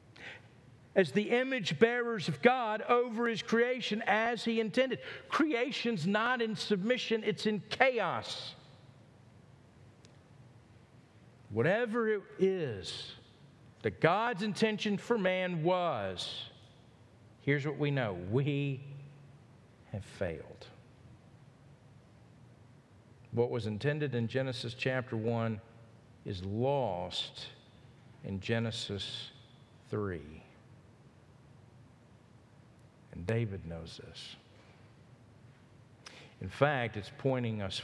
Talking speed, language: 85 wpm, English